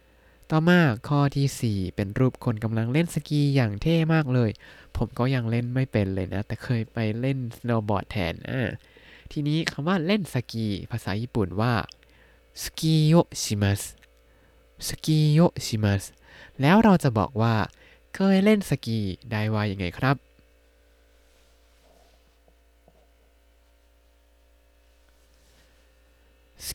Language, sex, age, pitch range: Thai, male, 20-39, 95-145 Hz